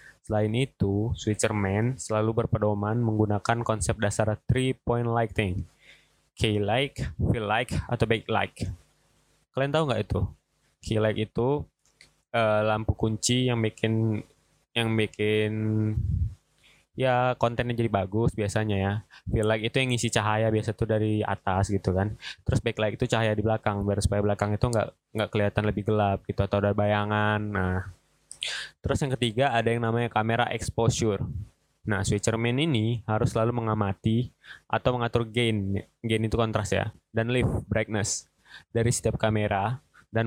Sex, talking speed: male, 150 wpm